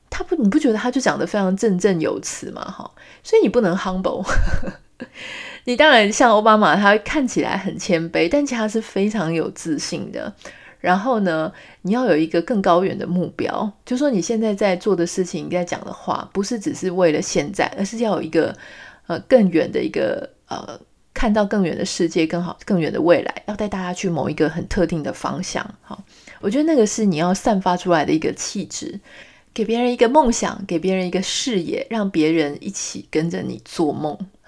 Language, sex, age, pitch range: Chinese, female, 30-49, 175-235 Hz